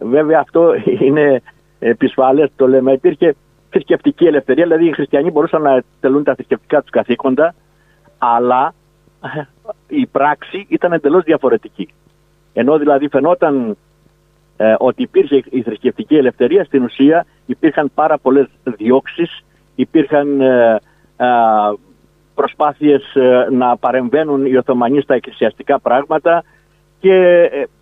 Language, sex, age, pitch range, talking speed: Greek, male, 50-69, 135-205 Hz, 115 wpm